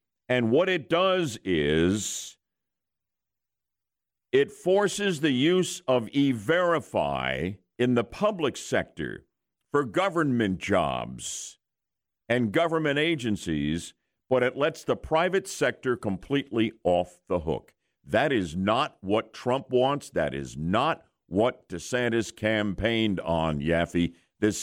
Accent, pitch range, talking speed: American, 100-140 Hz, 110 wpm